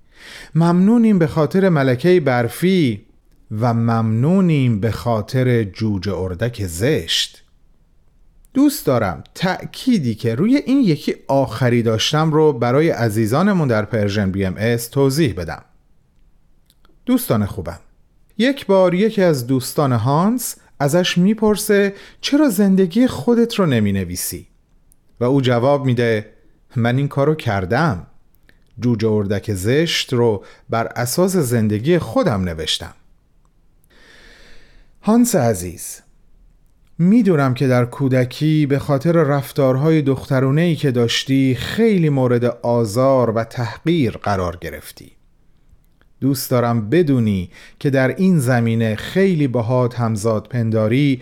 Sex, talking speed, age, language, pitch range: male, 110 wpm, 40-59, Persian, 115-170 Hz